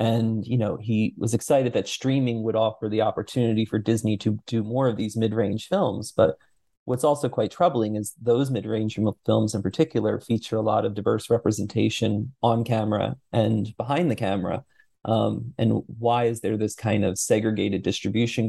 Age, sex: 30-49, male